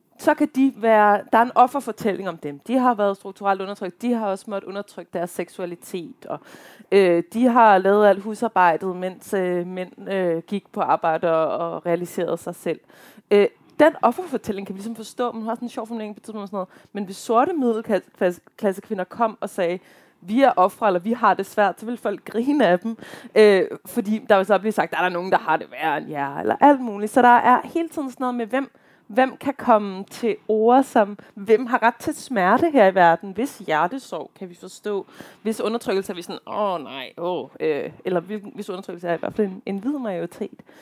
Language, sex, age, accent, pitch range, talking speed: Danish, female, 20-39, native, 190-240 Hz, 210 wpm